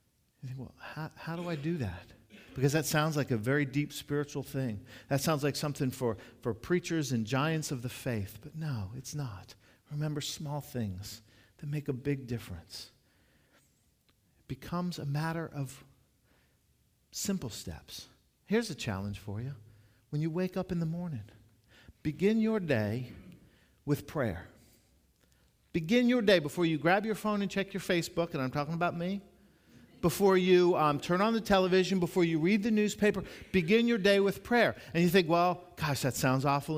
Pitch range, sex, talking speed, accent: 130-190 Hz, male, 175 wpm, American